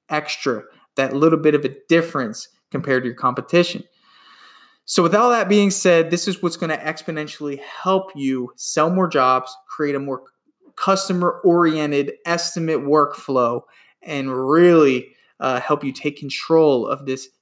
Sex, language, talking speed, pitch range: male, English, 150 wpm, 140-180 Hz